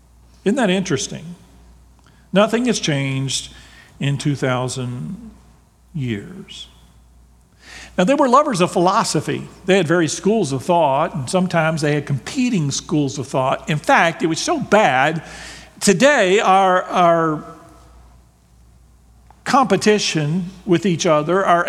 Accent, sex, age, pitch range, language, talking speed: American, male, 50-69, 145-195 Hz, English, 120 wpm